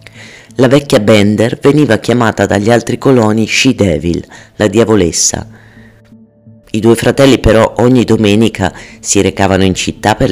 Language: Italian